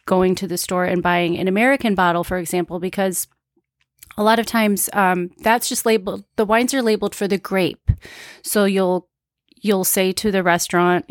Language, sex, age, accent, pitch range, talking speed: English, female, 30-49, American, 170-195 Hz, 190 wpm